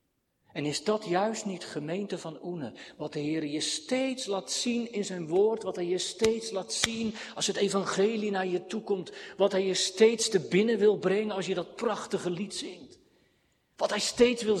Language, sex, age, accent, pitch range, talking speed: Dutch, male, 50-69, Dutch, 175-220 Hz, 200 wpm